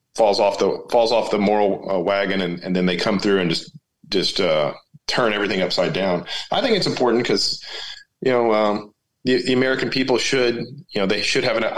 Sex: male